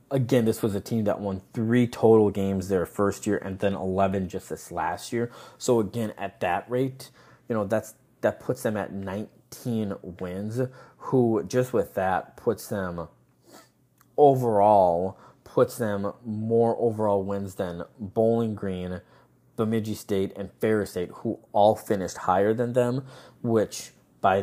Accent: American